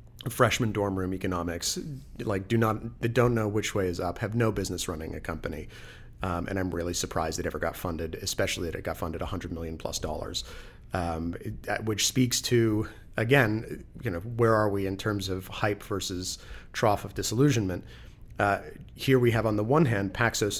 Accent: American